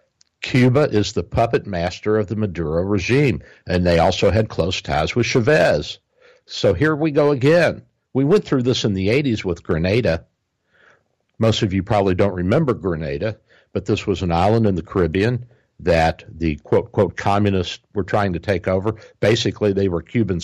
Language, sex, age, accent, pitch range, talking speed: English, male, 60-79, American, 90-120 Hz, 175 wpm